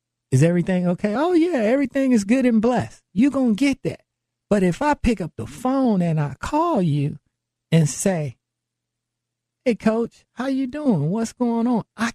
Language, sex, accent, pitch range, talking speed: English, male, American, 145-215 Hz, 185 wpm